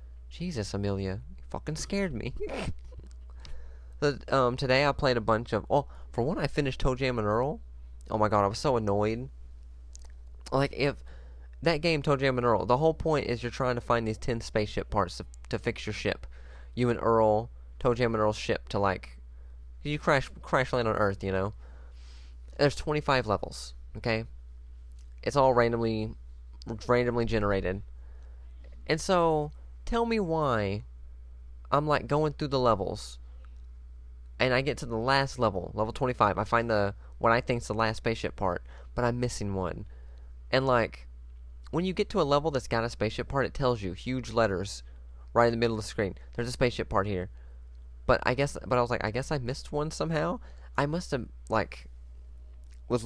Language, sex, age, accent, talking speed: English, male, 20-39, American, 190 wpm